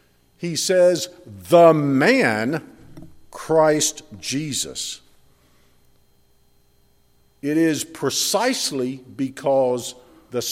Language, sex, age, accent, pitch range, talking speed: English, male, 50-69, American, 140-230 Hz, 65 wpm